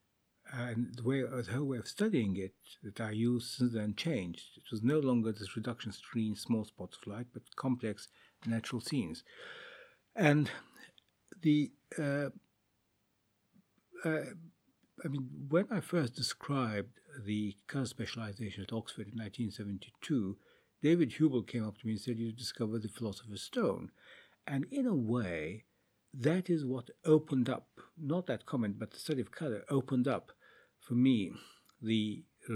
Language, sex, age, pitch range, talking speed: English, male, 60-79, 105-135 Hz, 150 wpm